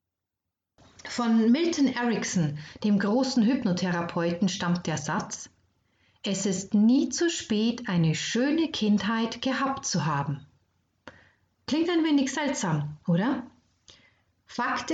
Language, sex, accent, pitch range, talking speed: German, female, German, 185-255 Hz, 105 wpm